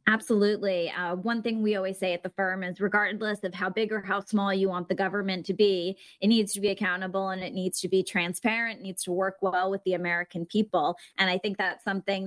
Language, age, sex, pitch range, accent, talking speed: English, 20-39, female, 185-230 Hz, American, 235 wpm